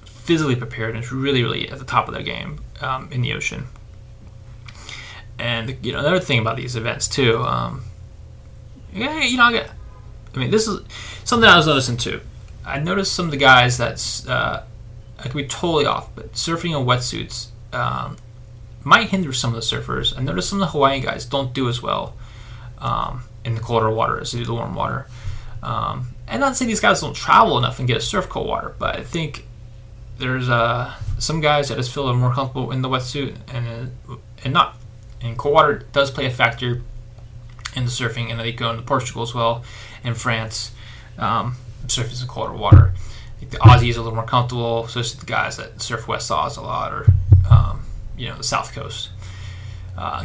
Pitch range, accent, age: 115-130 Hz, American, 20-39